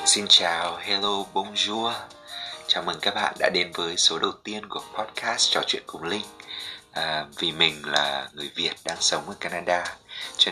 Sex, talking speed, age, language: male, 175 wpm, 20-39, Vietnamese